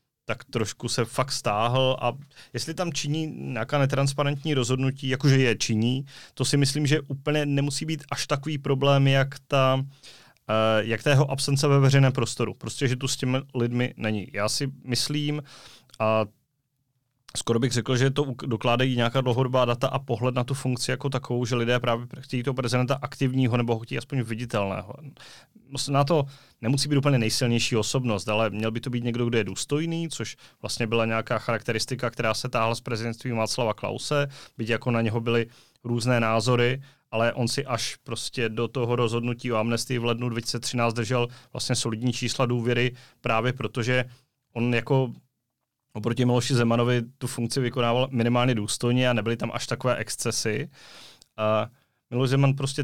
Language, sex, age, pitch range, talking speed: Czech, male, 30-49, 115-135 Hz, 165 wpm